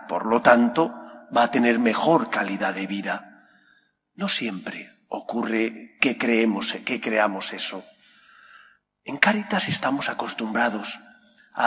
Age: 40-59